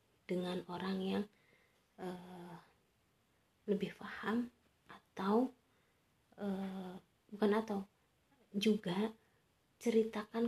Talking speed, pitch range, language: 70 wpm, 200-250 Hz, Indonesian